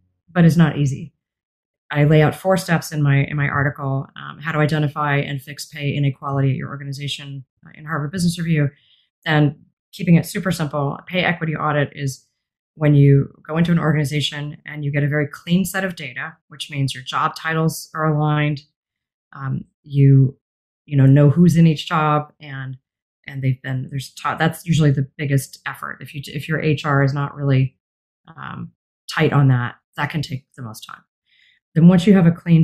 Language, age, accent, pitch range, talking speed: English, 30-49, American, 140-170 Hz, 195 wpm